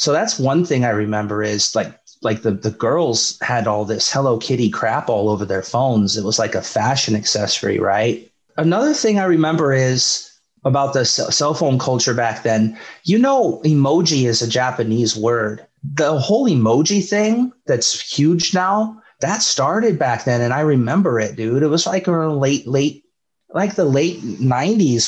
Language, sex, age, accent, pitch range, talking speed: English, male, 30-49, American, 110-150 Hz, 175 wpm